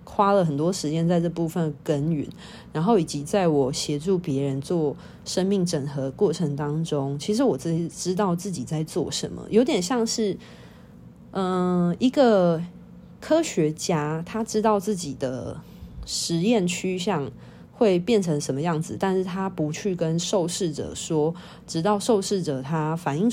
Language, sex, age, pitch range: Chinese, female, 20-39, 150-195 Hz